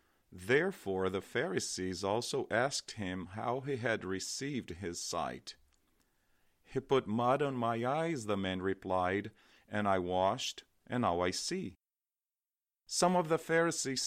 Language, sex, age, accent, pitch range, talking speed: English, male, 40-59, American, 95-130 Hz, 135 wpm